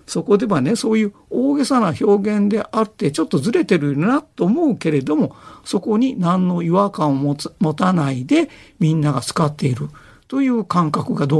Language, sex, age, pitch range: Japanese, male, 50-69, 145-220 Hz